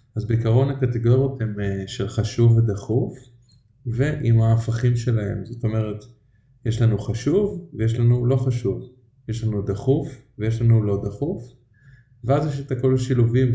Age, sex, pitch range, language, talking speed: 20-39, male, 110-125 Hz, Hebrew, 140 wpm